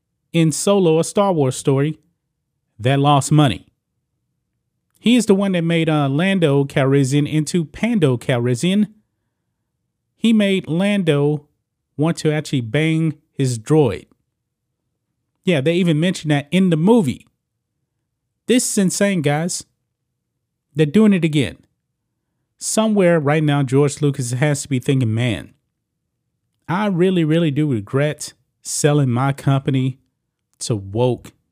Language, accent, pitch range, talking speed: English, American, 130-160 Hz, 125 wpm